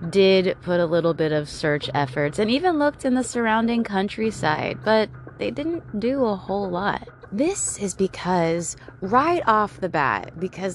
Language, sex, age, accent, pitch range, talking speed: English, female, 20-39, American, 150-215 Hz, 165 wpm